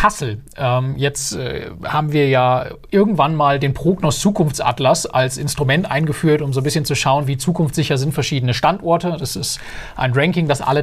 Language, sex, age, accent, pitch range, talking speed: German, male, 40-59, German, 135-170 Hz, 170 wpm